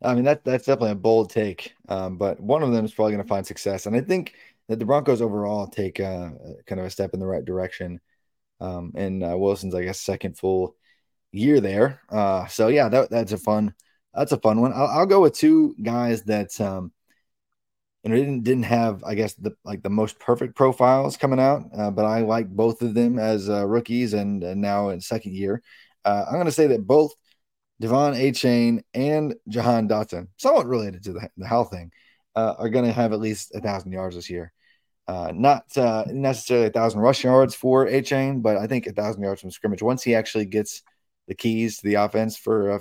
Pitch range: 100-125 Hz